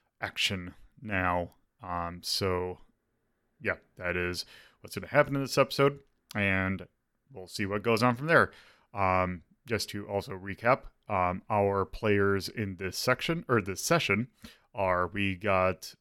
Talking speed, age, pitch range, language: 140 wpm, 30-49, 95-125 Hz, English